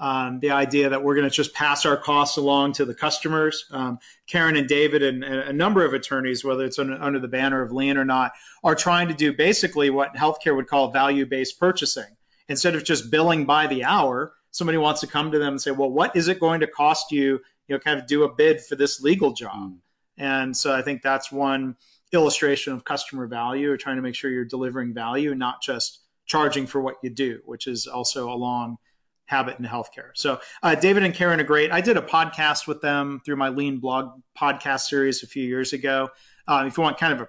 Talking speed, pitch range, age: 230 wpm, 130-150 Hz, 30-49